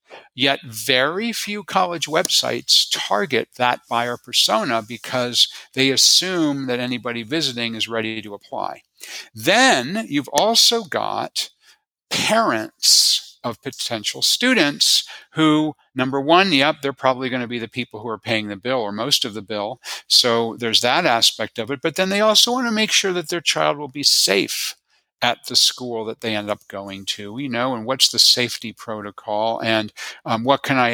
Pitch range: 115-155 Hz